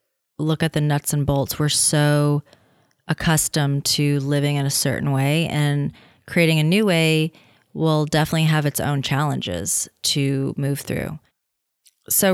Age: 30-49